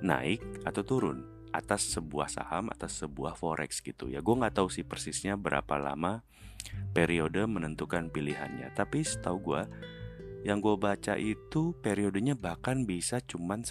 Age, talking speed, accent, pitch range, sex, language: 30-49, 140 wpm, native, 80-110 Hz, male, Indonesian